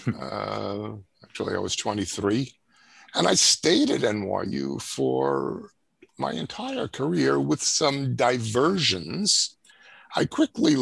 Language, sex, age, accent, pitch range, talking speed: English, male, 50-69, American, 110-175 Hz, 105 wpm